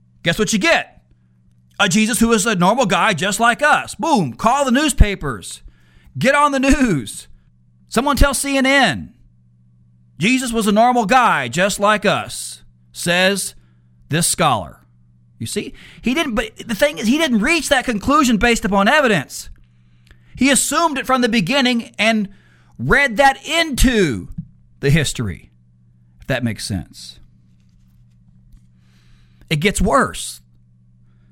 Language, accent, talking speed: English, American, 135 wpm